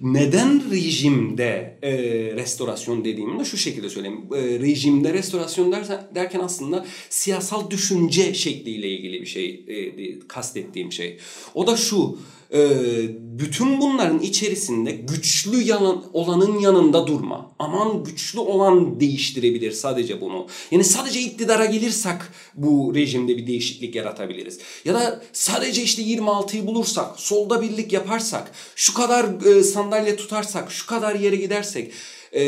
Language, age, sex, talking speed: Turkish, 40-59, male, 120 wpm